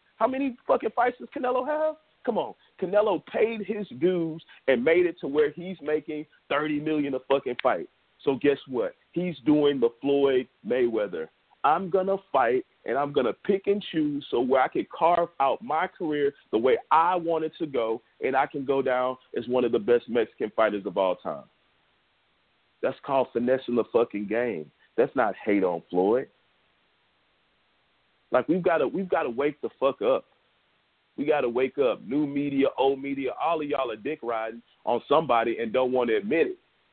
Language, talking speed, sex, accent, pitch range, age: English, 185 wpm, male, American, 135-205 Hz, 40-59